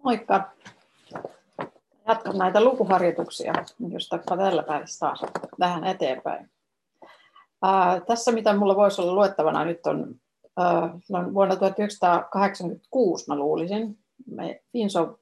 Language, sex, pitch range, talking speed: Finnish, female, 165-200 Hz, 85 wpm